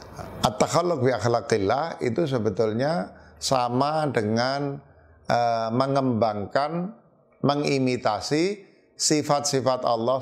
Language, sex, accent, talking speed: English, male, Indonesian, 60 wpm